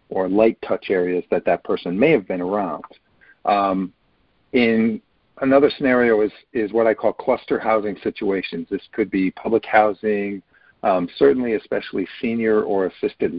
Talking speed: 150 wpm